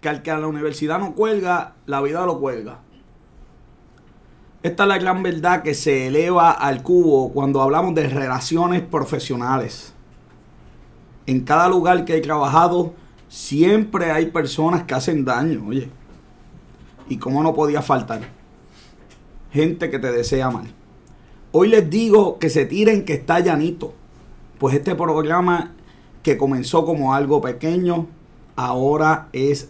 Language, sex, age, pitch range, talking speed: Spanish, male, 30-49, 130-165 Hz, 140 wpm